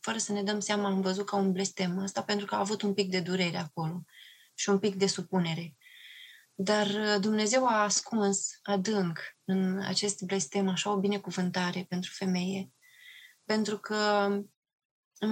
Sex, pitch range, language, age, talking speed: female, 190-220 Hz, Romanian, 20-39, 160 wpm